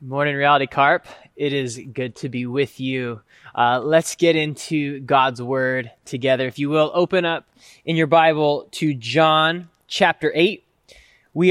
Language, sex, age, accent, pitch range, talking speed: English, male, 20-39, American, 130-170 Hz, 155 wpm